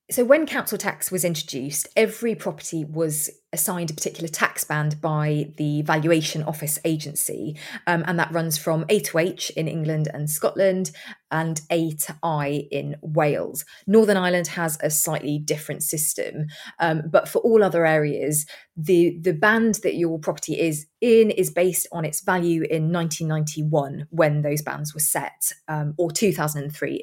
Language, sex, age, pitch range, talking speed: English, female, 20-39, 155-190 Hz, 160 wpm